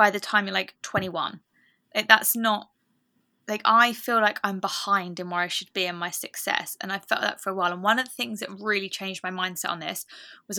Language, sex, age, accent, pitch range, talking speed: English, female, 20-39, British, 190-225 Hz, 240 wpm